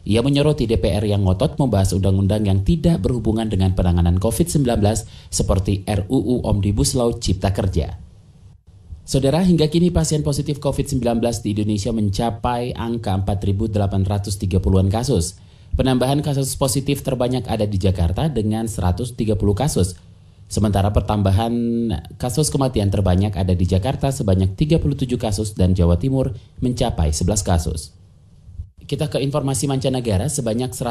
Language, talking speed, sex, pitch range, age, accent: Indonesian, 120 wpm, male, 95-130 Hz, 30-49, native